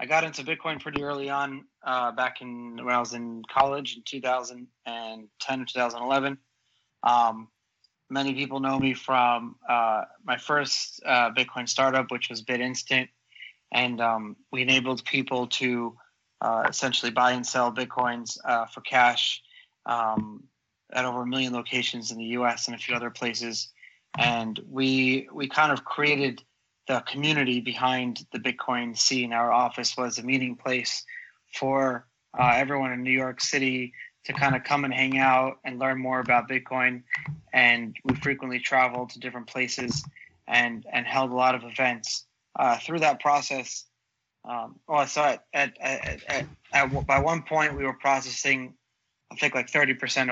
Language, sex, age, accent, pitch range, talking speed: English, male, 30-49, American, 120-135 Hz, 160 wpm